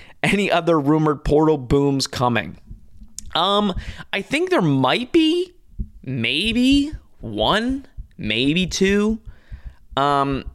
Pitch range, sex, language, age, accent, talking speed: 120-180 Hz, male, English, 20-39, American, 95 wpm